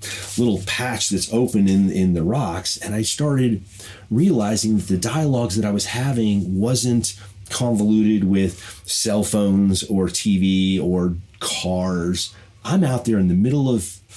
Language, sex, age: English, male, 30-49